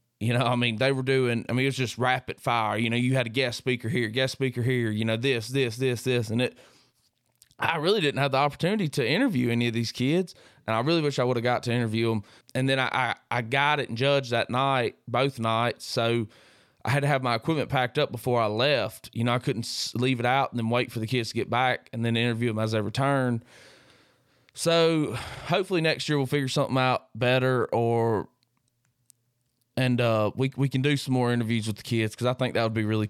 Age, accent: 20-39, American